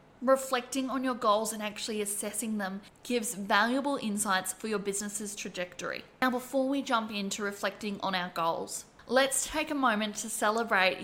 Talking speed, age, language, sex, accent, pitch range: 165 wpm, 10-29, English, female, Australian, 205-245 Hz